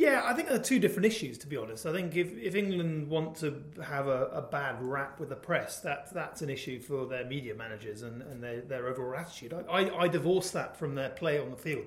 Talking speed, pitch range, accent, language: 250 wpm, 135-170 Hz, British, English